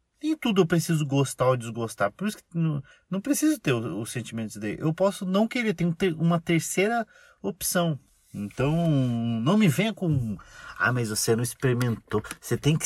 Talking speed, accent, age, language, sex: 175 wpm, Brazilian, 30-49, Portuguese, male